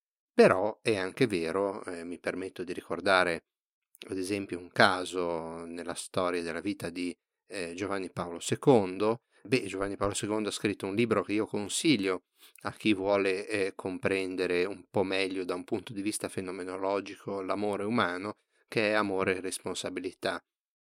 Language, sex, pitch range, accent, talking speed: Italian, male, 90-105 Hz, native, 155 wpm